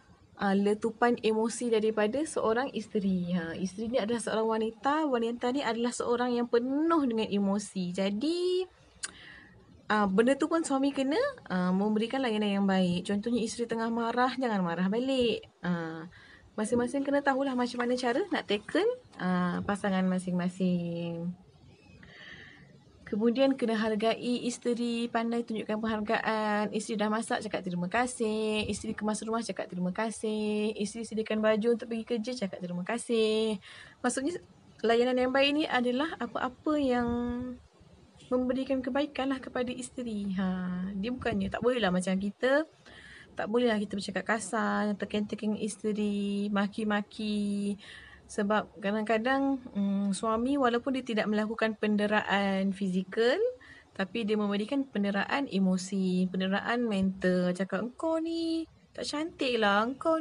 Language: Malay